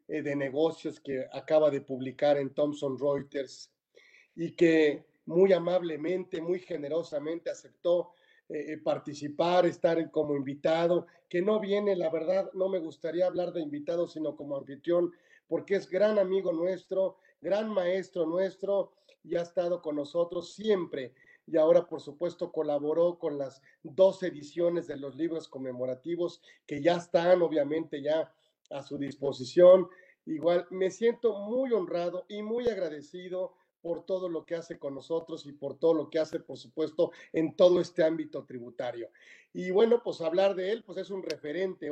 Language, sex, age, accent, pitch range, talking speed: Spanish, male, 40-59, Mexican, 155-190 Hz, 155 wpm